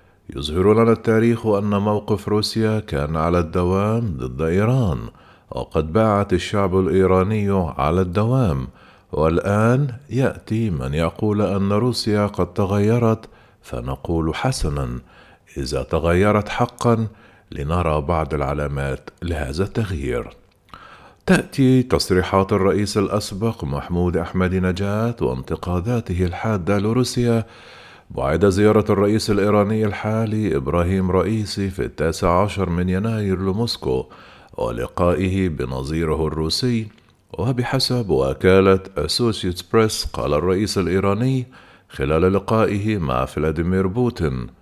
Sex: male